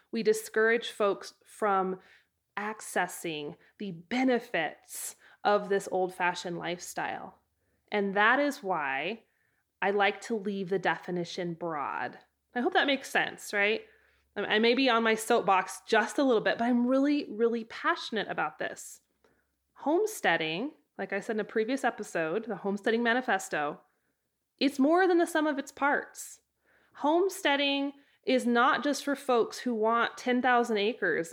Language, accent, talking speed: English, American, 140 wpm